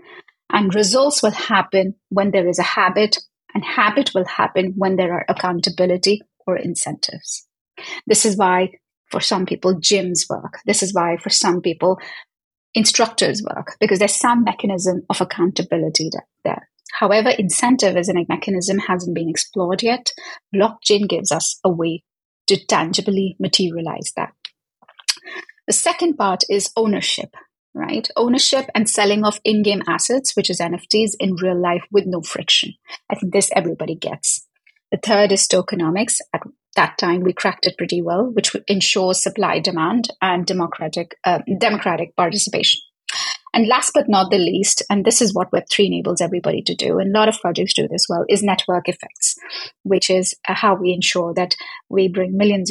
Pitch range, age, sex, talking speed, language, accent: 180-215 Hz, 30-49, female, 165 wpm, English, Indian